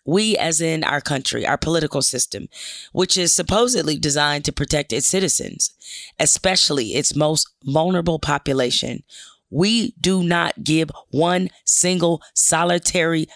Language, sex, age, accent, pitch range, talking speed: English, female, 30-49, American, 150-185 Hz, 125 wpm